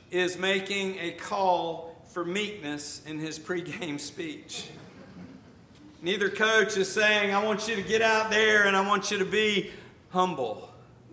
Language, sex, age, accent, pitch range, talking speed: English, male, 50-69, American, 165-205 Hz, 150 wpm